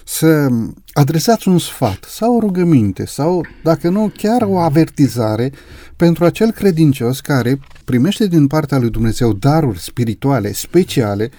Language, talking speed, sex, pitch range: Romanian, 130 wpm, male, 125-170 Hz